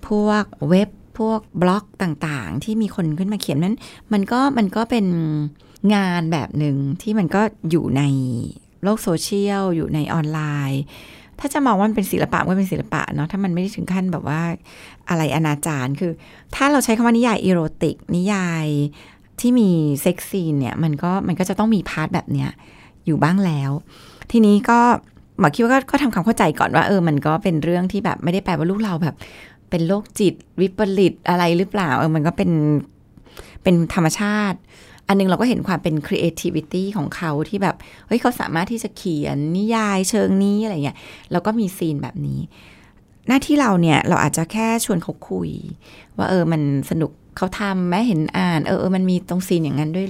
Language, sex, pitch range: Thai, female, 155-205 Hz